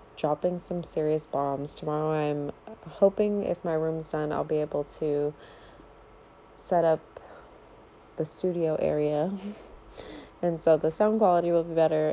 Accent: American